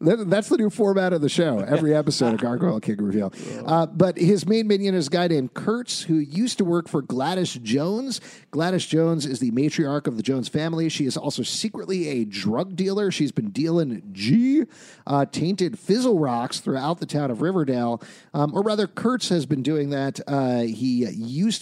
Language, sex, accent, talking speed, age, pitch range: English, male, American, 190 wpm, 40-59, 140-195 Hz